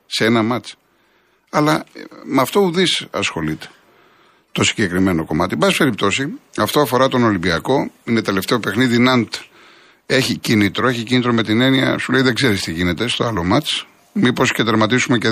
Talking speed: 160 wpm